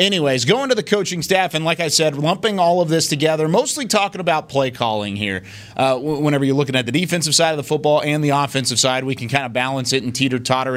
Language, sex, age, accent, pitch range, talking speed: English, male, 30-49, American, 125-155 Hz, 250 wpm